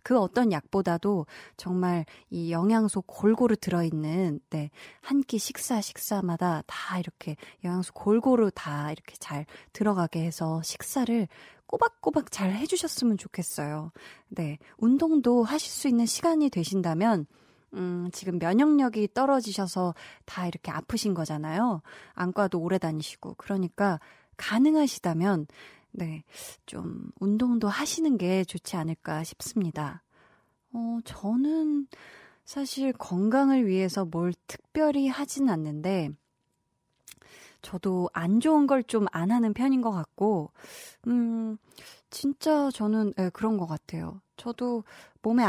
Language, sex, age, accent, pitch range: Korean, female, 20-39, native, 175-240 Hz